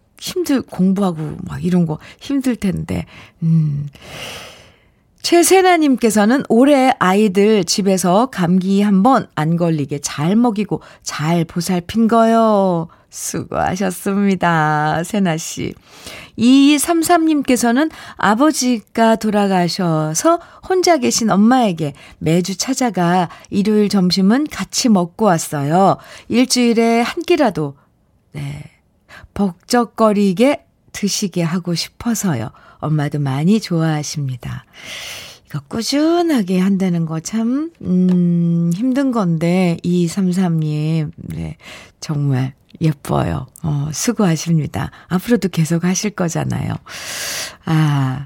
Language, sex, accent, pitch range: Korean, female, native, 160-240 Hz